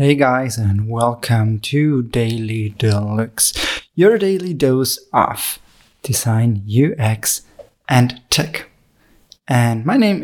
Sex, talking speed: male, 105 wpm